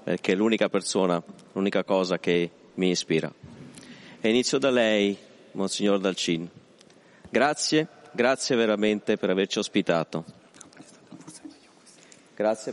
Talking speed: 105 wpm